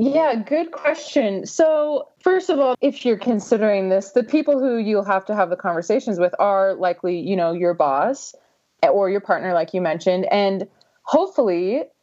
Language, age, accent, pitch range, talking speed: English, 20-39, American, 180-250 Hz, 175 wpm